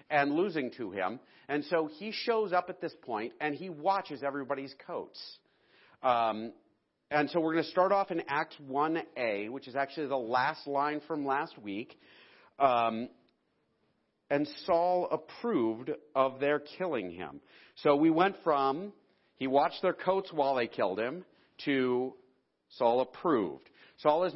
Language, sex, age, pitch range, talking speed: English, male, 40-59, 135-170 Hz, 155 wpm